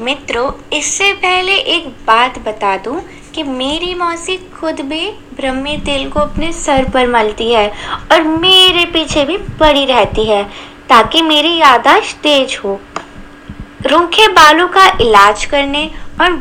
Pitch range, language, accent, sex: 240-355 Hz, Hindi, native, female